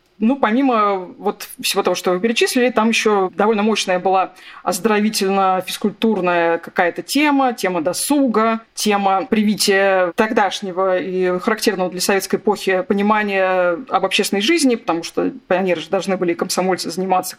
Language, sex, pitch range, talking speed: Russian, female, 185-235 Hz, 130 wpm